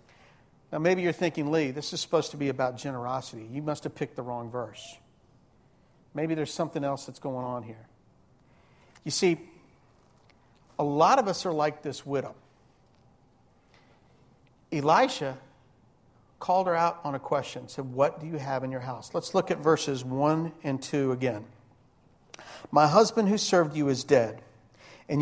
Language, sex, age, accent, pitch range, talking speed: English, male, 50-69, American, 130-165 Hz, 160 wpm